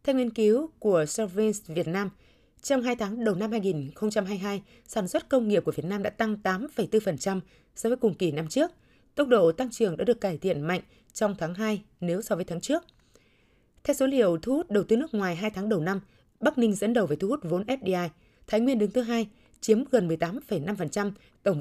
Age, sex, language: 20-39, female, Vietnamese